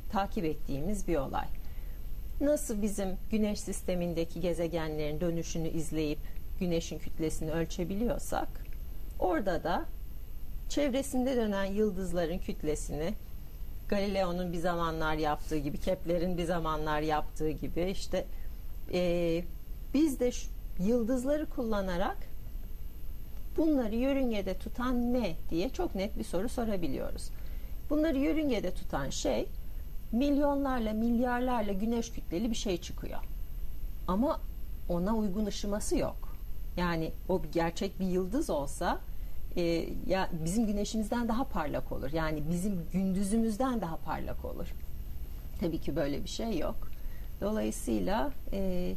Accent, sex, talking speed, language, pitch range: native, female, 110 wpm, Turkish, 165-230 Hz